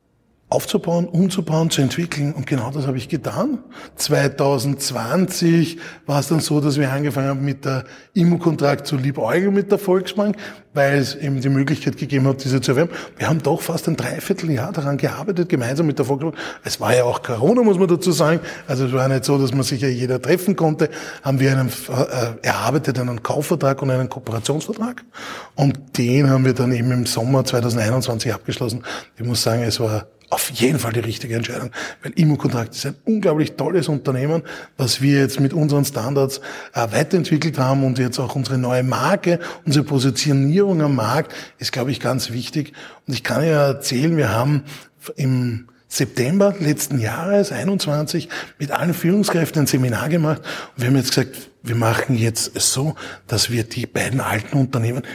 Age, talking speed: 20-39, 180 wpm